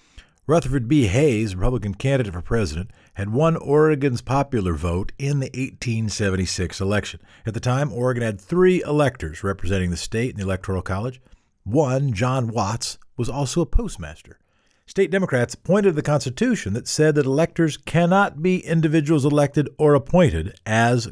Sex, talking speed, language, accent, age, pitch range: male, 155 wpm, English, American, 50-69, 100-155 Hz